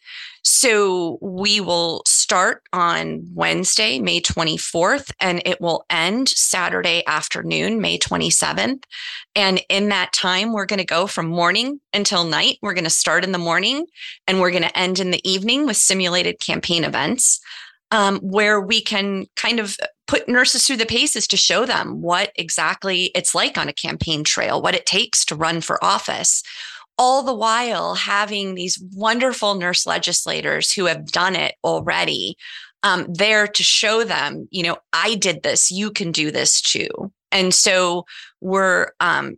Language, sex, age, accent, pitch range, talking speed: English, female, 30-49, American, 175-220 Hz, 165 wpm